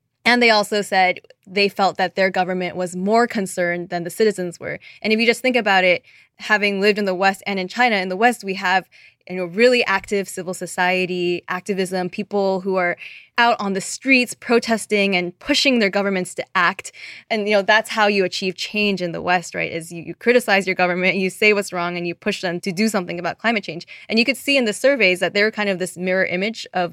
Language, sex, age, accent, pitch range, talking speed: English, female, 20-39, American, 180-215 Hz, 230 wpm